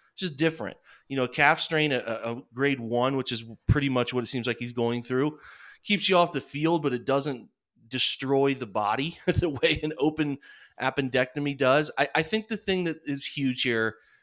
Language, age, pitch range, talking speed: English, 30-49, 120-155 Hz, 200 wpm